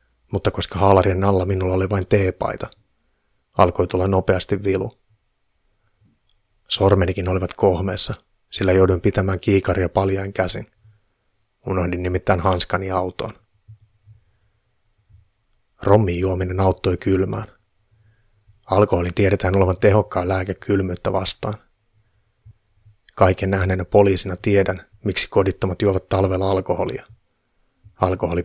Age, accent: 30-49, native